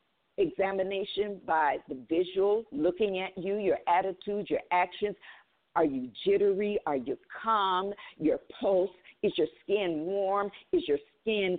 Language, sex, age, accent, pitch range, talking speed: English, female, 50-69, American, 175-225 Hz, 135 wpm